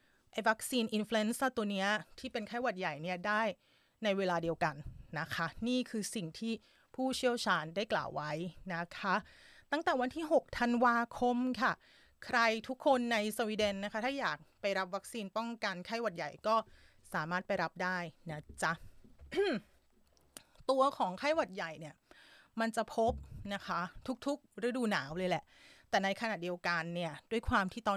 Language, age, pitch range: Thai, 30-49, 185-240 Hz